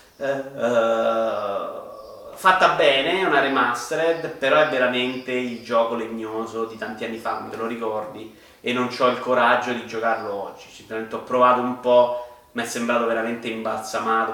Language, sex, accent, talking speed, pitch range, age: Italian, male, native, 150 wpm, 115-125 Hz, 30-49